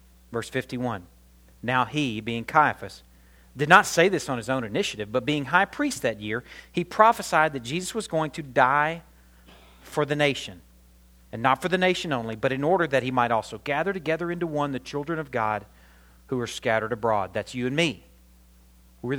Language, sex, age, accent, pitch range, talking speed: English, male, 40-59, American, 105-155 Hz, 190 wpm